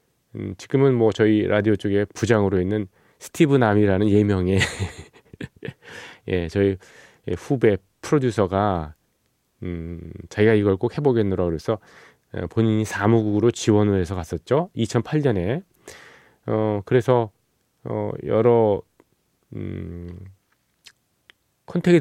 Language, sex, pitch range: Korean, male, 95-120 Hz